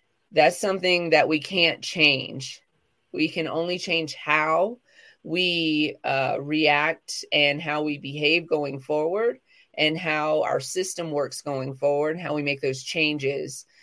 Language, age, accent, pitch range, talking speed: English, 30-49, American, 150-180 Hz, 140 wpm